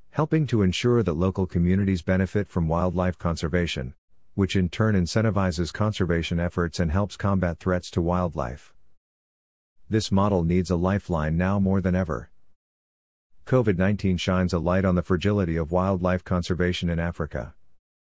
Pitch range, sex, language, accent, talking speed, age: 85-100 Hz, male, English, American, 145 wpm, 50-69